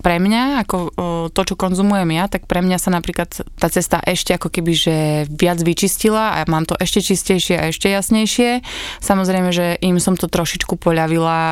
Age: 20-39